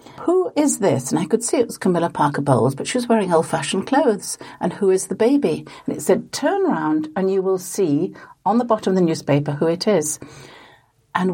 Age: 60-79